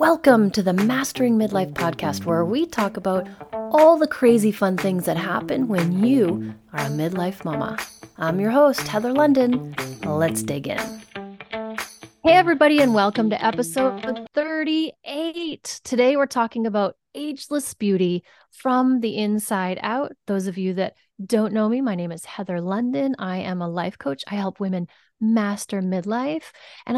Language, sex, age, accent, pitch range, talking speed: English, female, 30-49, American, 185-250 Hz, 160 wpm